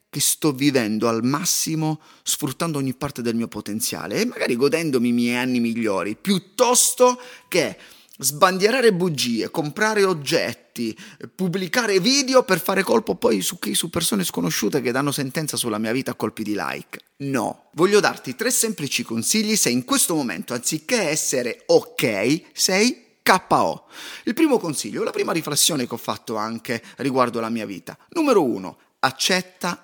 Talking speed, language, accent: 155 wpm, Italian, native